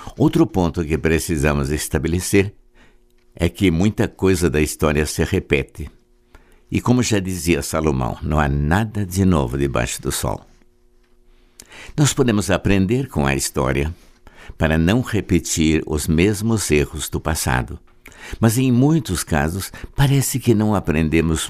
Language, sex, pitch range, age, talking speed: Portuguese, male, 80-105 Hz, 60-79, 135 wpm